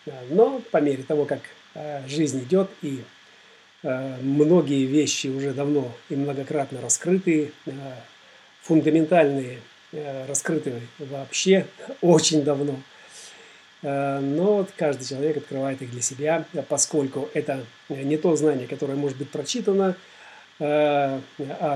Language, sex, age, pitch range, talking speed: Russian, male, 40-59, 135-155 Hz, 100 wpm